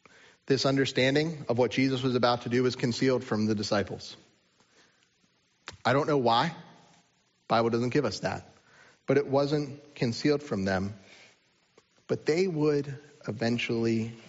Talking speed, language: 145 wpm, English